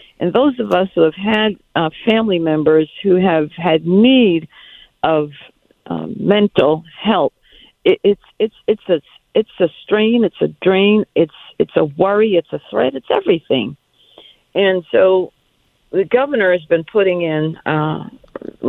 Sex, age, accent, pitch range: female, 60-79, American, 170-245 Hz